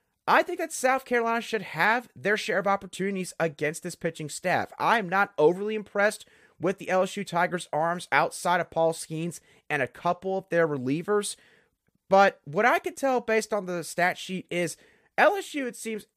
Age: 30-49